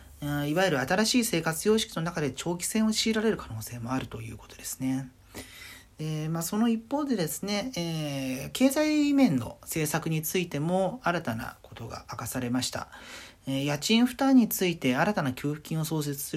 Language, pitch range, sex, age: Japanese, 120-170 Hz, male, 40-59